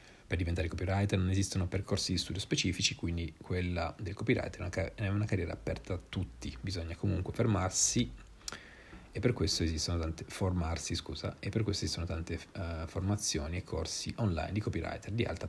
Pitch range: 85-100 Hz